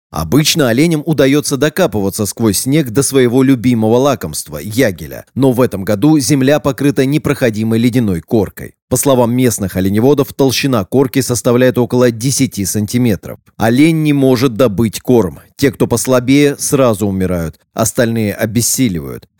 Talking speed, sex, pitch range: 130 wpm, male, 110-140 Hz